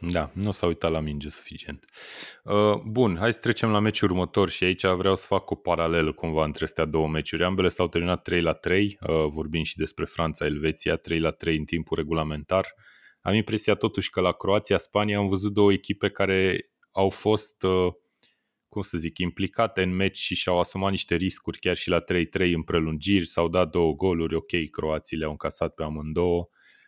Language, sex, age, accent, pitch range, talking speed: Romanian, male, 20-39, native, 80-95 Hz, 190 wpm